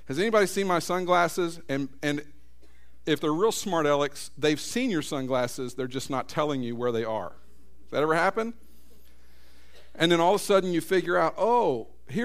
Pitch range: 100-150 Hz